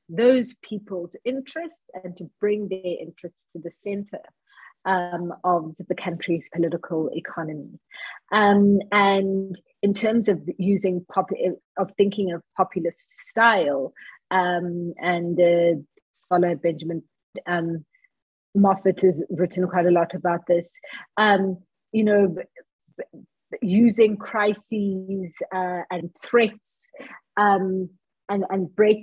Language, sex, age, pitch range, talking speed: English, female, 30-49, 180-210 Hz, 110 wpm